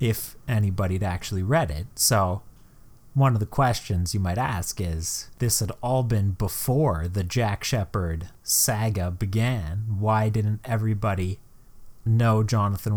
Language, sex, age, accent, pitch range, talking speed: English, male, 30-49, American, 95-115 Hz, 135 wpm